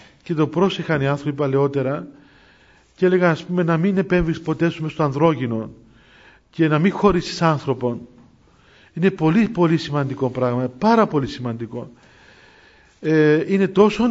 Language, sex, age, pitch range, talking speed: Greek, male, 40-59, 150-200 Hz, 130 wpm